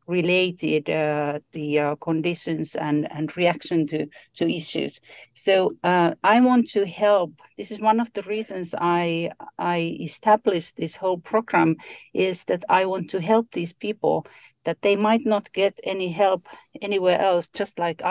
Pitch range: 170-210 Hz